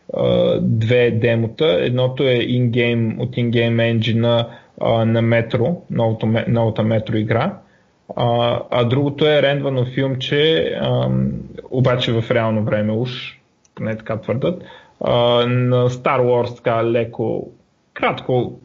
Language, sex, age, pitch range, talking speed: Bulgarian, male, 20-39, 115-130 Hz, 110 wpm